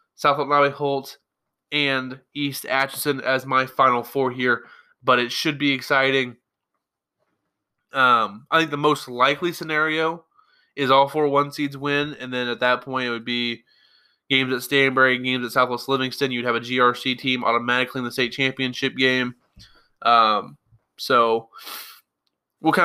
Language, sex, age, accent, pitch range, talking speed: English, male, 20-39, American, 125-145 Hz, 150 wpm